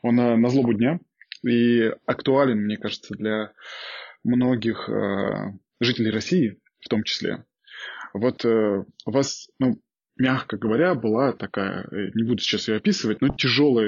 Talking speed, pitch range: 140 wpm, 110-140 Hz